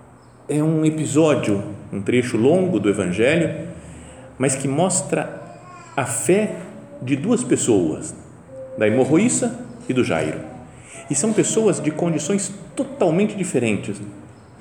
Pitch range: 120-170 Hz